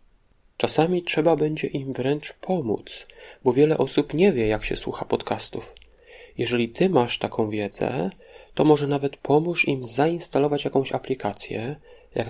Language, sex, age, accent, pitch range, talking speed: Polish, male, 30-49, native, 115-155 Hz, 140 wpm